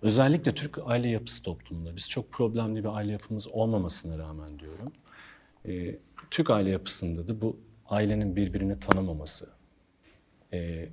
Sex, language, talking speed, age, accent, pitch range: male, Turkish, 130 wpm, 40-59, native, 90-115 Hz